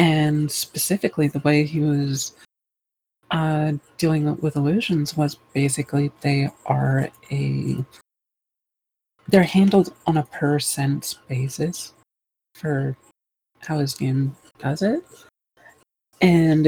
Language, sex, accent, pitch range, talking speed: English, female, American, 135-155 Hz, 105 wpm